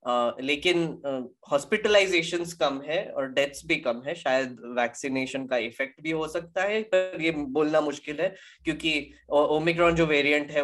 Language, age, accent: Hindi, 20-39, native